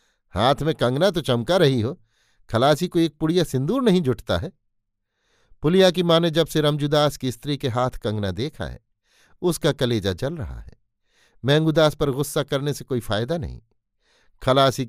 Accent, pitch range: native, 105-160 Hz